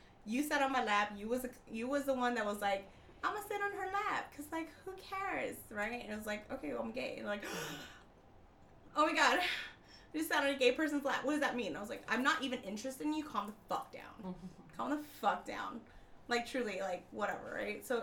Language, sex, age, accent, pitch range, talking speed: English, female, 20-39, American, 185-255 Hz, 245 wpm